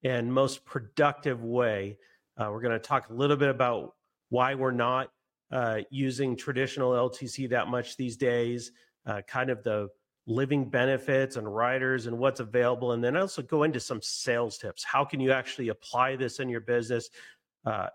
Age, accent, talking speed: 40-59, American, 175 wpm